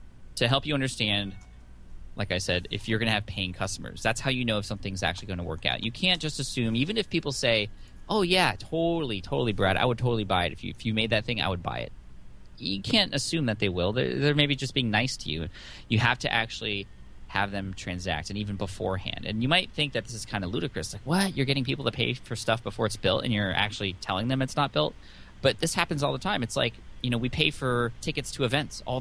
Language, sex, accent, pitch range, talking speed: English, male, American, 95-125 Hz, 250 wpm